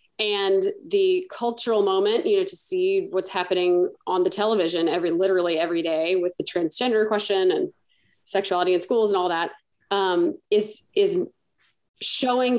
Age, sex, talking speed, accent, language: 30-49, female, 155 wpm, American, English